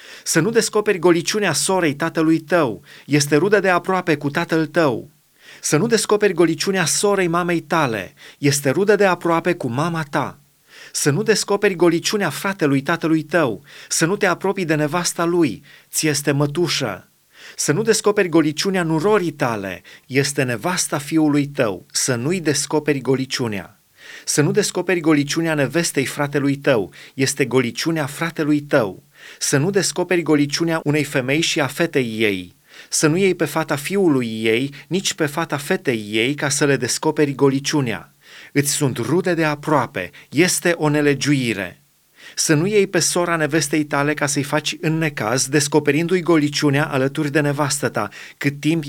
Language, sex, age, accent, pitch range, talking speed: Romanian, male, 30-49, native, 140-175 Hz, 150 wpm